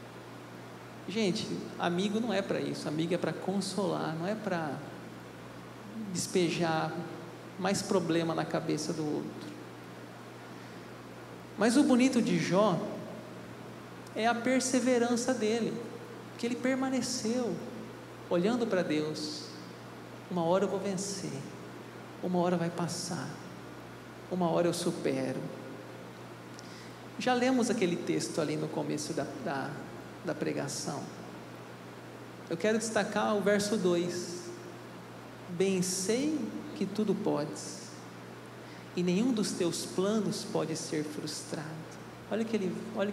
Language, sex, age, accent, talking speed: Portuguese, male, 50-69, Brazilian, 115 wpm